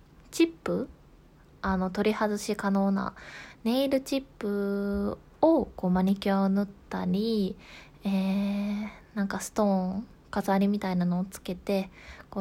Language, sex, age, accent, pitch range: Japanese, female, 20-39, native, 195-225 Hz